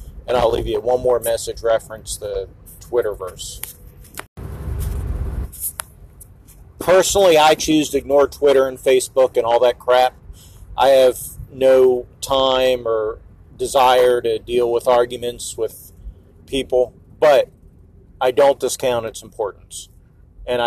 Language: English